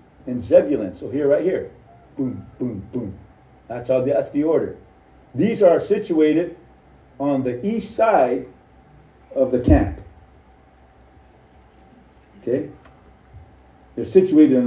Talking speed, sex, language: 115 wpm, male, English